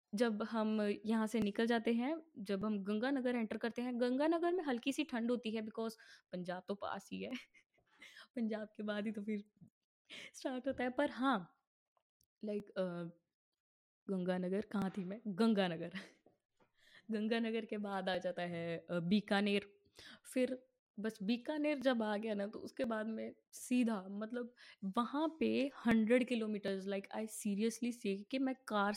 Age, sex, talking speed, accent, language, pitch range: 20-39, female, 155 wpm, native, Hindi, 205-250 Hz